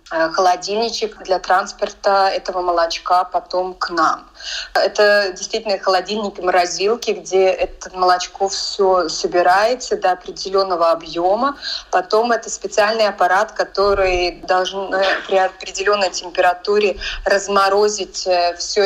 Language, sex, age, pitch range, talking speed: Russian, female, 20-39, 180-210 Hz, 100 wpm